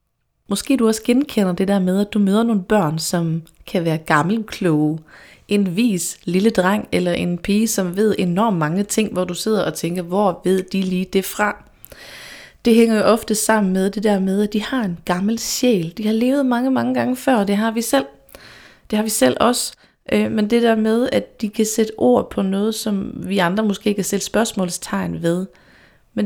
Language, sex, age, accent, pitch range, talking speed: Danish, female, 30-49, native, 180-220 Hz, 210 wpm